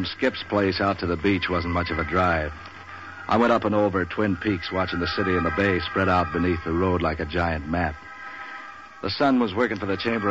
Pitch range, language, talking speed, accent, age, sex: 85-105 Hz, English, 235 wpm, American, 60-79, male